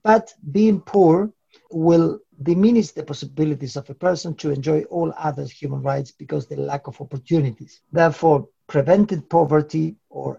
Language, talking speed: English, 150 wpm